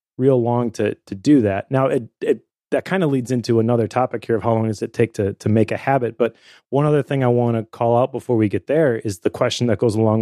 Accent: American